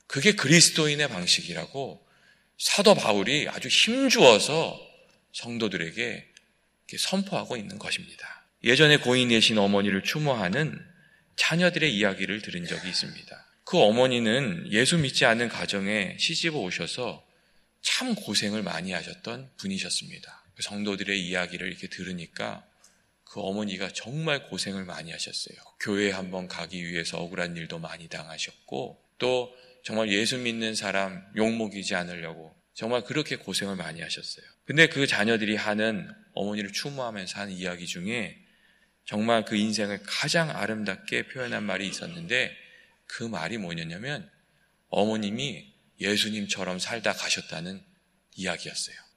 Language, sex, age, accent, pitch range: Korean, male, 30-49, native, 100-170 Hz